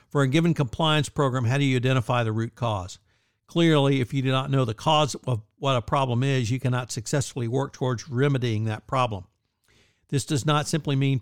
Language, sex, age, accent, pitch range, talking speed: English, male, 60-79, American, 115-140 Hz, 205 wpm